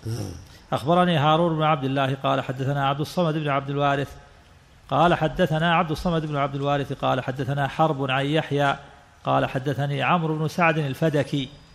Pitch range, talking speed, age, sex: 140-165 Hz, 155 wpm, 50-69, male